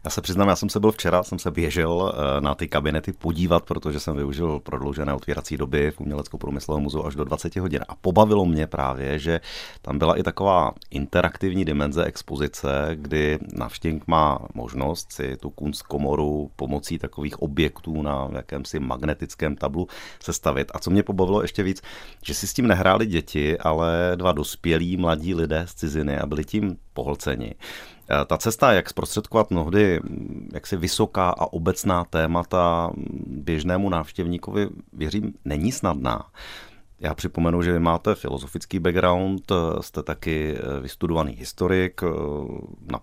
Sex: male